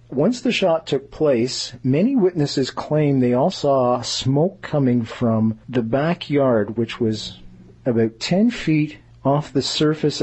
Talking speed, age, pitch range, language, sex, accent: 140 wpm, 40-59, 115-145 Hz, English, male, American